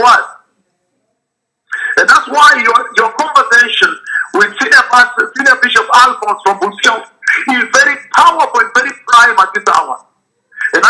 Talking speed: 125 wpm